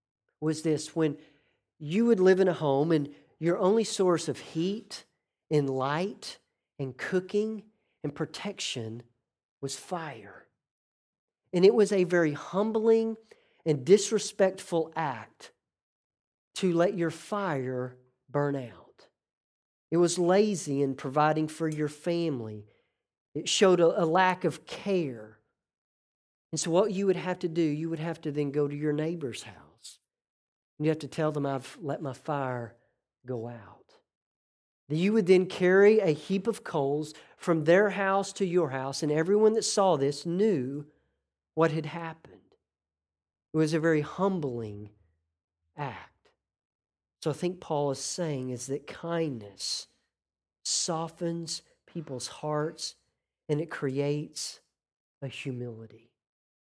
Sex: male